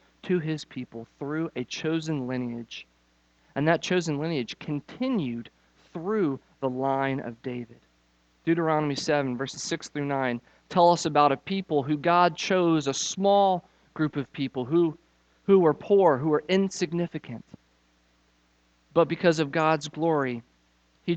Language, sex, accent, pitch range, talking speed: English, male, American, 120-165 Hz, 140 wpm